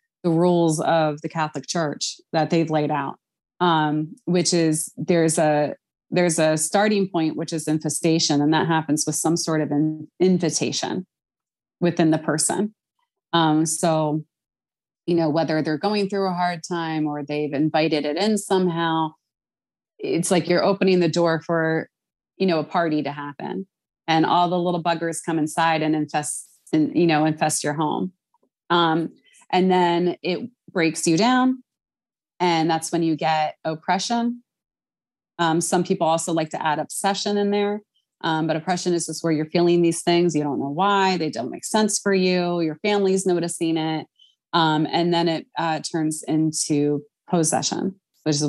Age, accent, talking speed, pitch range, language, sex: 30-49, American, 170 wpm, 155-180 Hz, English, female